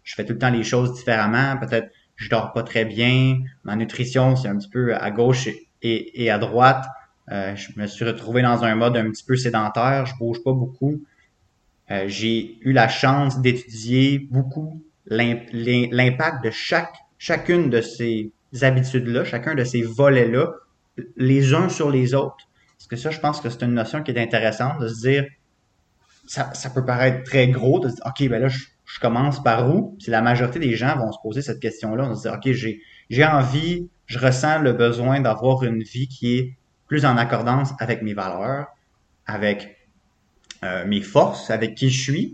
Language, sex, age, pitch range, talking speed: French, male, 20-39, 115-135 Hz, 200 wpm